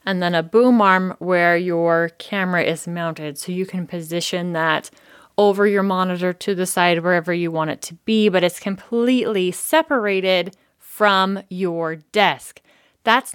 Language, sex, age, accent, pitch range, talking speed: English, female, 20-39, American, 175-215 Hz, 155 wpm